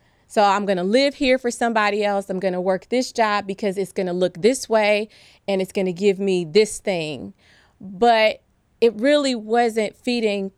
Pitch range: 185-230 Hz